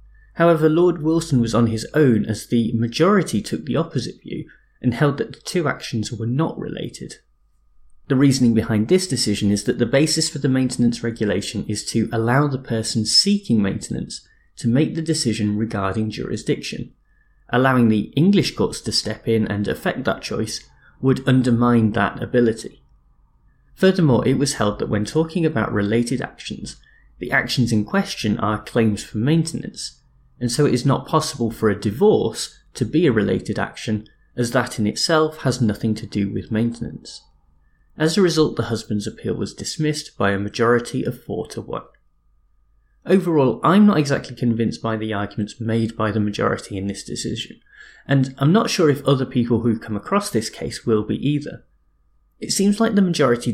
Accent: British